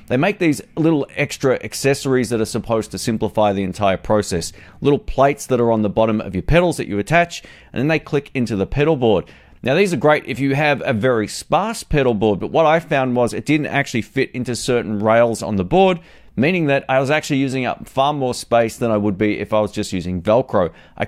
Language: English